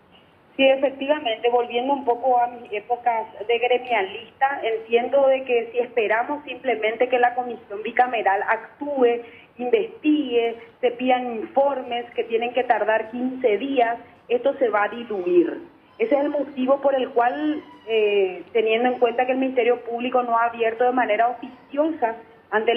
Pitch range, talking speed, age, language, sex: 230-280 Hz, 155 wpm, 30-49, Spanish, female